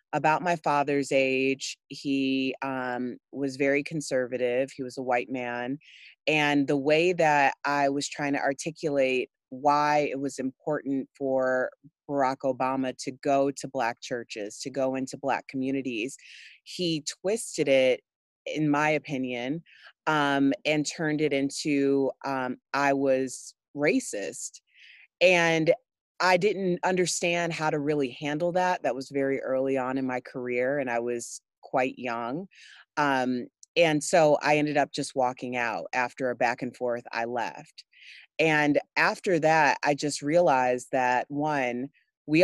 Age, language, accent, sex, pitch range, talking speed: 30-49, English, American, female, 130-150 Hz, 145 wpm